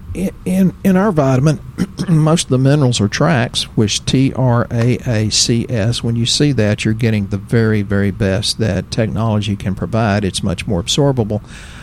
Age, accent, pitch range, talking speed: 50-69, American, 105-130 Hz, 180 wpm